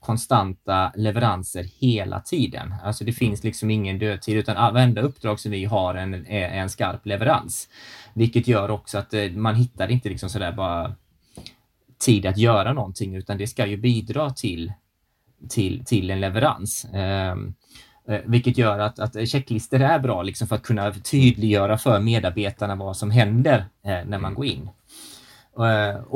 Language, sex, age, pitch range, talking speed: Swedish, male, 20-39, 100-125 Hz, 165 wpm